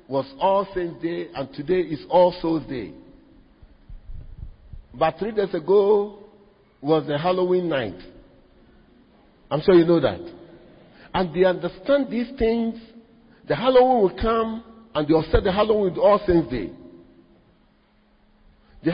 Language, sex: English, male